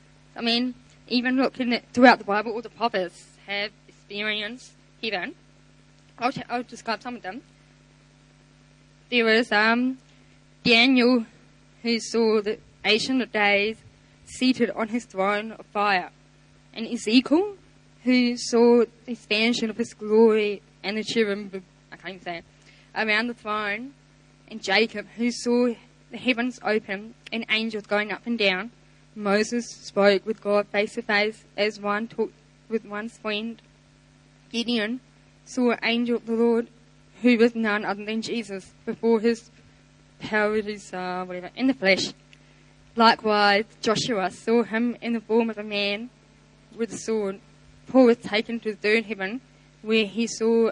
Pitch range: 205-235 Hz